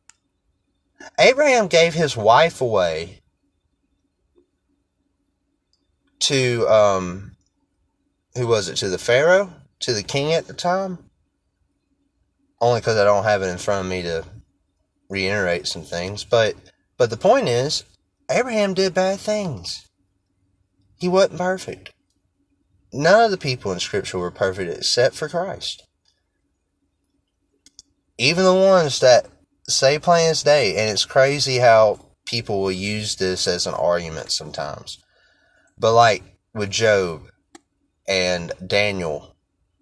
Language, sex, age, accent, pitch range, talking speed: English, male, 30-49, American, 95-135 Hz, 120 wpm